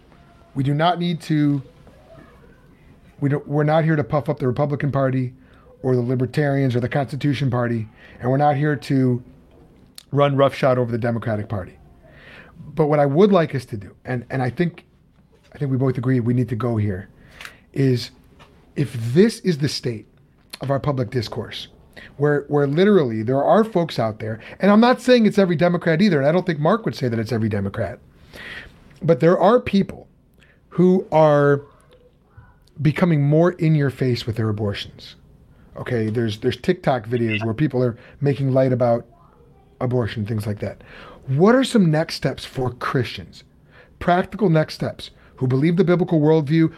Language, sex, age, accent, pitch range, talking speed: English, male, 30-49, American, 125-155 Hz, 175 wpm